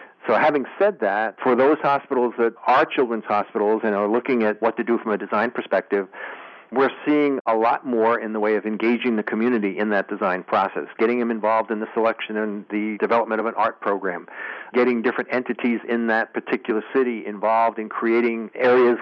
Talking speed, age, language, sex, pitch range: 195 wpm, 50-69, English, male, 110-120 Hz